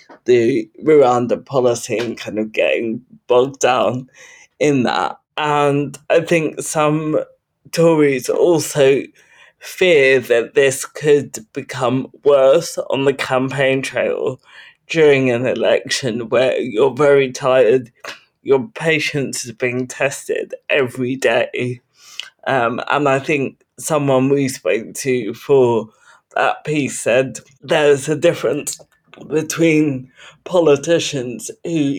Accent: British